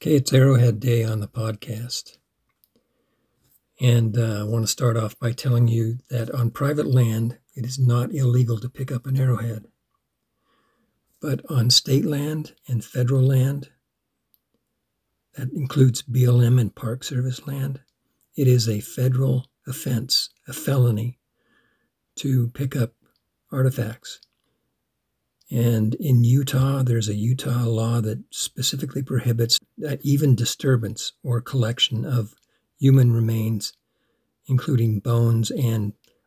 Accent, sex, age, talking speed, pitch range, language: American, male, 60-79, 125 wpm, 115-135 Hz, English